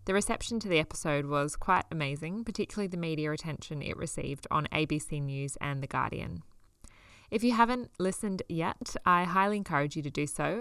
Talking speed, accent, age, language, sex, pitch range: 180 wpm, Australian, 10-29, English, female, 145-180 Hz